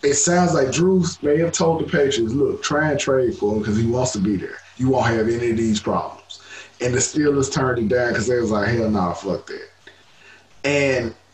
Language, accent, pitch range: English, American, 115-155 Hz